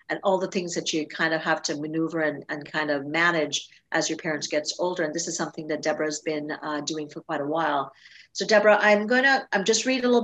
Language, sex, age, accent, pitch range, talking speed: English, female, 50-69, American, 160-195 Hz, 260 wpm